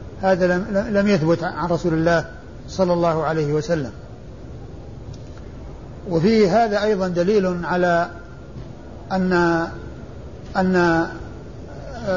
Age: 60-79